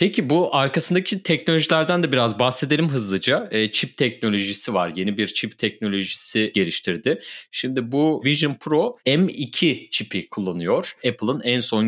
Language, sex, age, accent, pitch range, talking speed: Turkish, male, 30-49, native, 105-155 Hz, 135 wpm